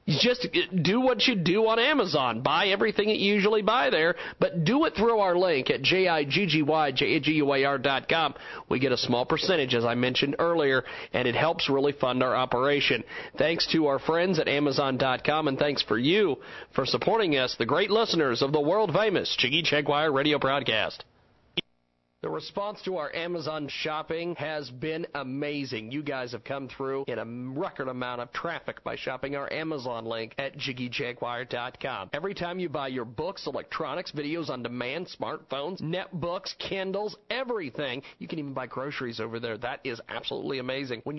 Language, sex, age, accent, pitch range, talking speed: English, male, 40-59, American, 135-170 Hz, 165 wpm